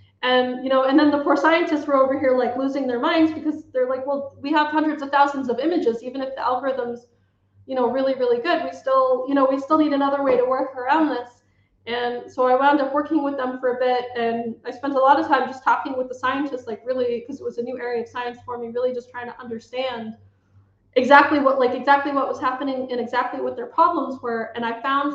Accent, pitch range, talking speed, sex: American, 230-270 Hz, 250 wpm, female